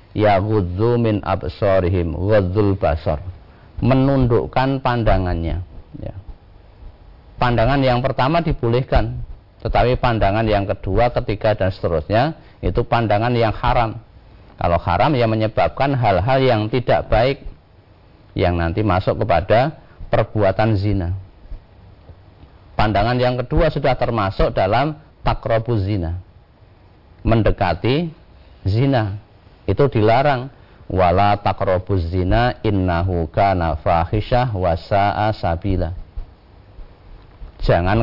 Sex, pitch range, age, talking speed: male, 90-120 Hz, 50-69, 85 wpm